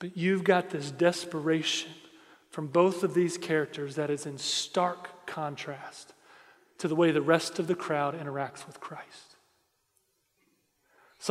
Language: English